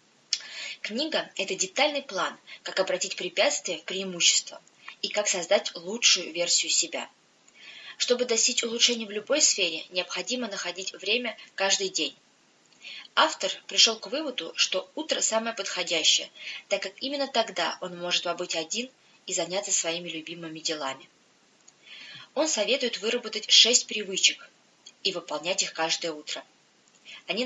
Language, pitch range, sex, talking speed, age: English, 180-230 Hz, female, 130 wpm, 20-39